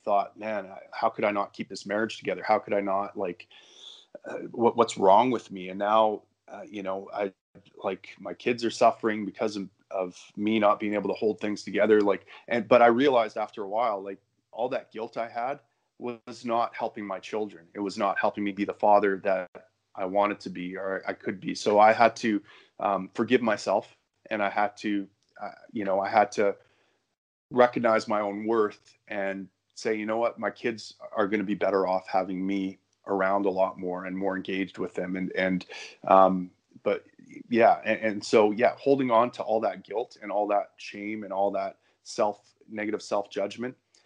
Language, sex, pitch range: English, male, 95-110 Hz